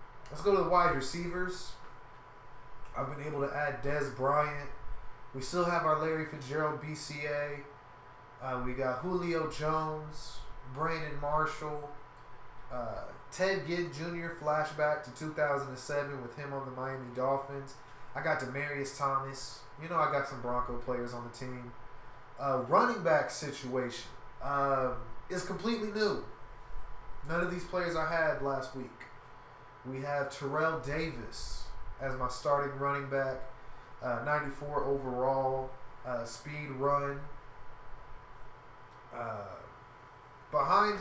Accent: American